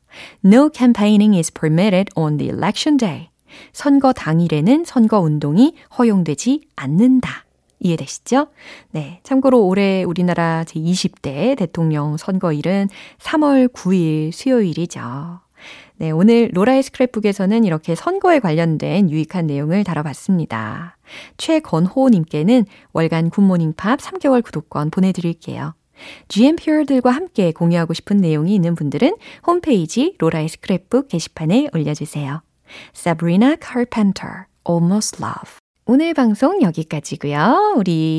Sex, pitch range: female, 165-255 Hz